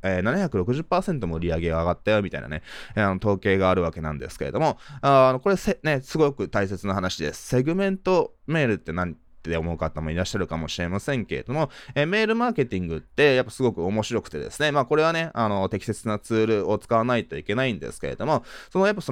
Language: Japanese